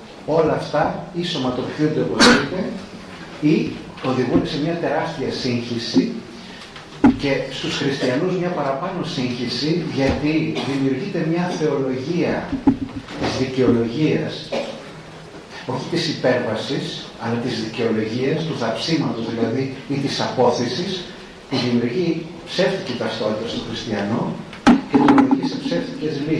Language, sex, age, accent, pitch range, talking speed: Greek, male, 40-59, native, 125-155 Hz, 100 wpm